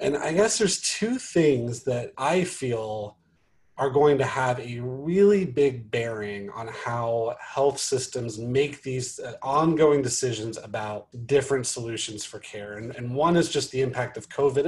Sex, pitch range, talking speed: male, 115-150 Hz, 160 wpm